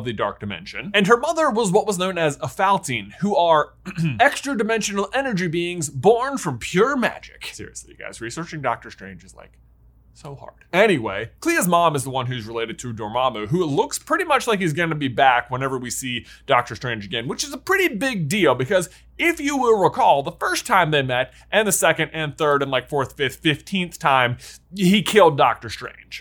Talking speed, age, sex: 205 wpm, 20-39, male